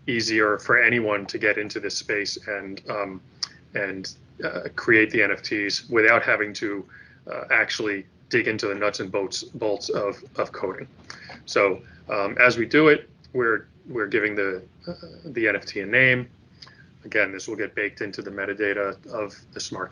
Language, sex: English, male